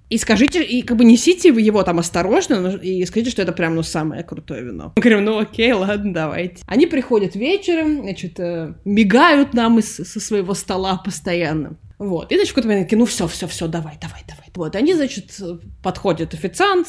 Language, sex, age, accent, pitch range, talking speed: Russian, female, 20-39, native, 180-235 Hz, 175 wpm